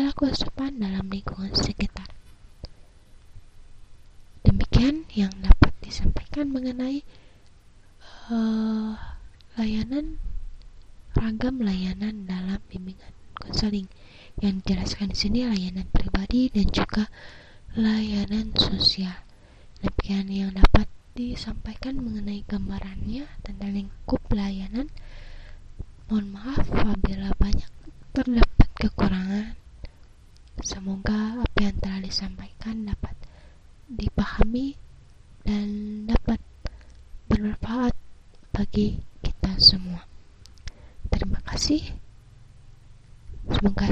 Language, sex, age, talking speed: Indonesian, female, 20-39, 75 wpm